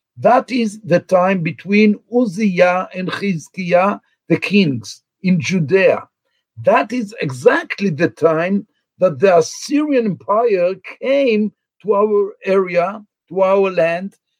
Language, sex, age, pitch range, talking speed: English, male, 60-79, 170-215 Hz, 115 wpm